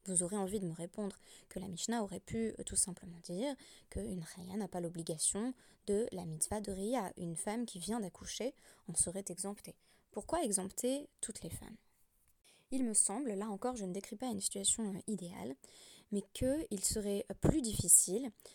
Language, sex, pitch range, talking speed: French, female, 180-225 Hz, 180 wpm